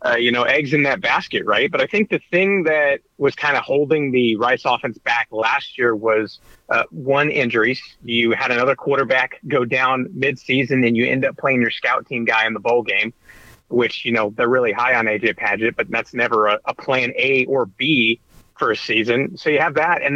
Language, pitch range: English, 115-150 Hz